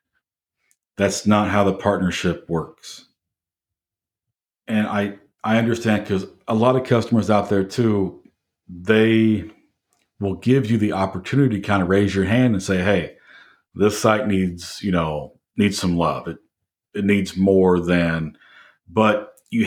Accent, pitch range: American, 95-110 Hz